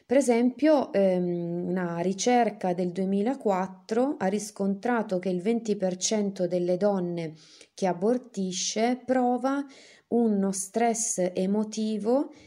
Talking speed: 95 wpm